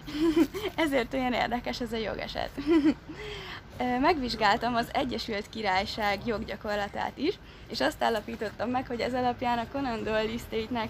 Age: 20-39